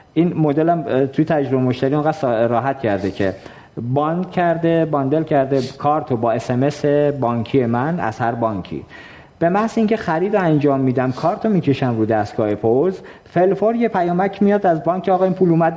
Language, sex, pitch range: Persian, male, 120-175 Hz